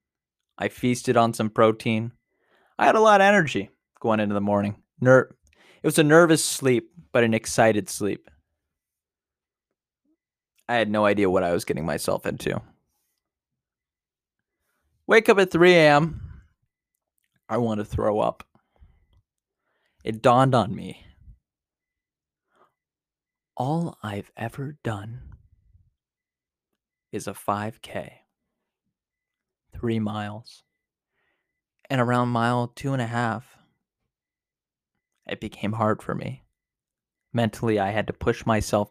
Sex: male